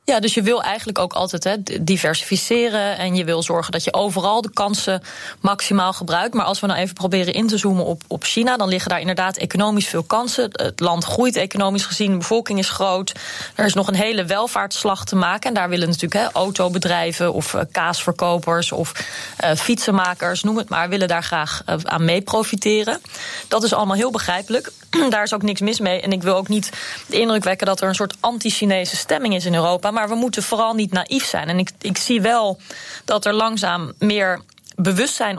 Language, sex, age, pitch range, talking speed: Dutch, female, 20-39, 185-220 Hz, 200 wpm